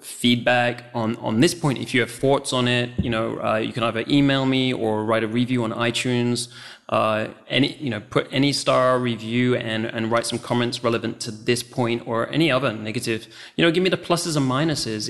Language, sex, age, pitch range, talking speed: English, male, 20-39, 115-130 Hz, 215 wpm